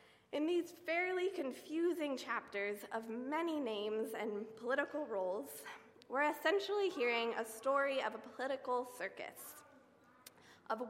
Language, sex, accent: English, female, American